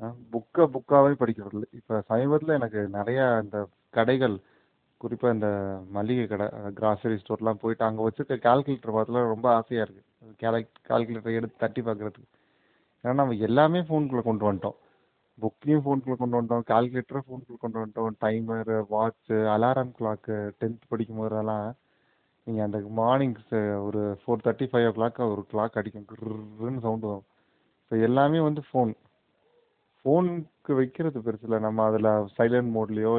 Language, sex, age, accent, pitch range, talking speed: Tamil, male, 30-49, native, 110-130 Hz, 135 wpm